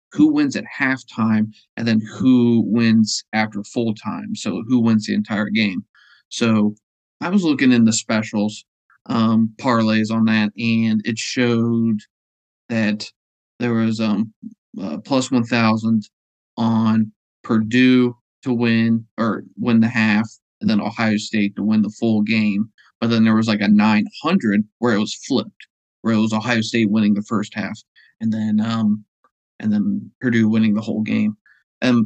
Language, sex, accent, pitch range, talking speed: English, male, American, 110-135 Hz, 165 wpm